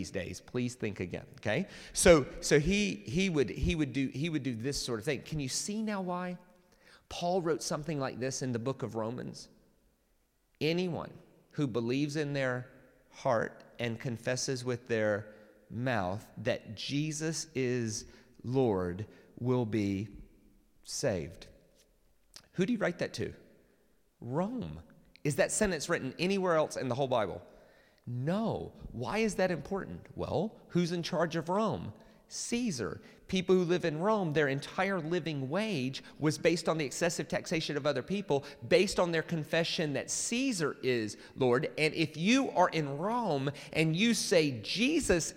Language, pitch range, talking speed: English, 130-185 Hz, 155 wpm